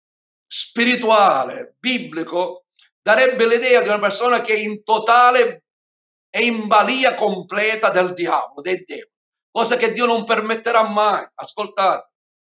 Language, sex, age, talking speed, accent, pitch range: Italian, male, 50-69, 120 wpm, native, 190-230 Hz